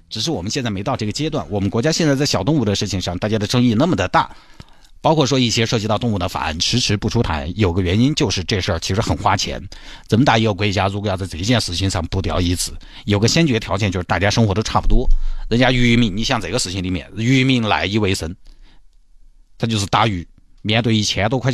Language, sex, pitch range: Chinese, male, 90-120 Hz